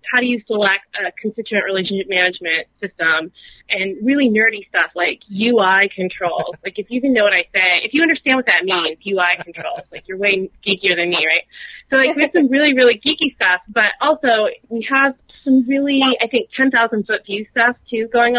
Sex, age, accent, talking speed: female, 30-49, American, 200 wpm